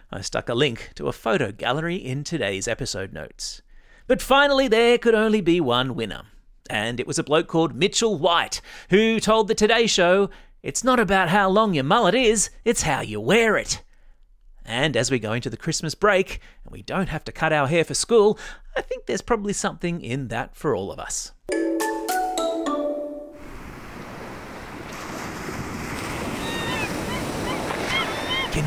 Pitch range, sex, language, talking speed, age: 150-225 Hz, male, English, 160 wpm, 30-49